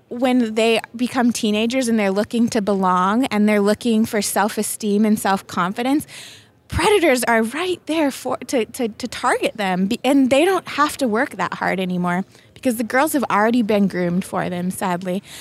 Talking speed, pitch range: 175 wpm, 200-255 Hz